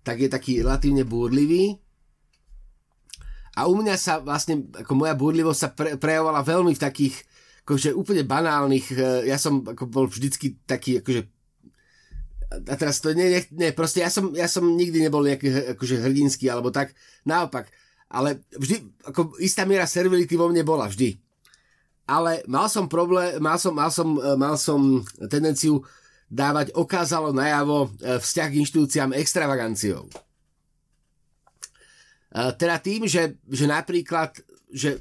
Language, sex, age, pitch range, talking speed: Slovak, male, 30-49, 140-180 Hz, 140 wpm